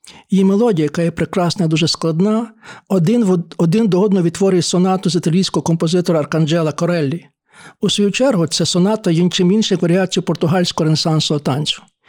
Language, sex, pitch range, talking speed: Ukrainian, male, 165-200 Hz, 145 wpm